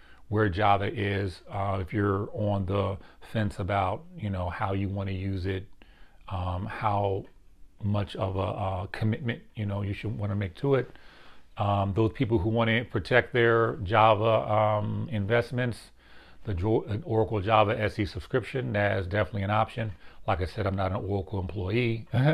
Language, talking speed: English, 170 wpm